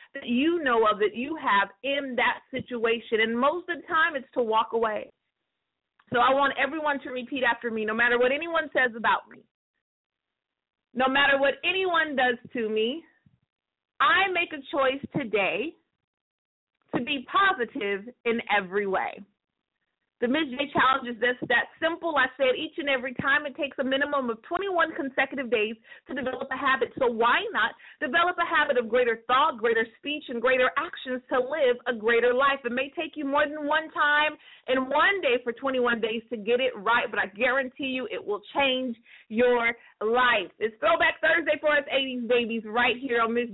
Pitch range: 235-300 Hz